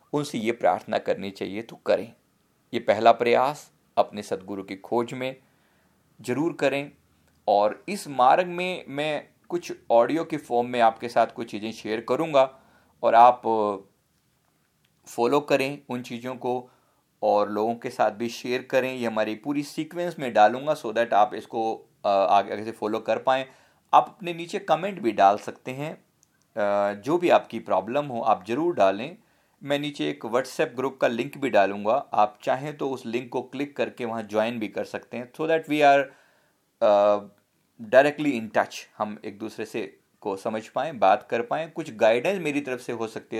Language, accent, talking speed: Hindi, native, 175 wpm